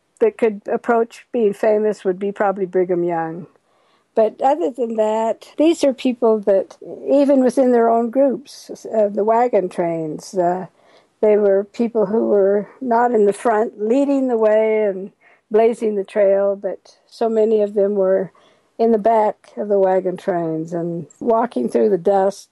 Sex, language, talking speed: female, English, 165 wpm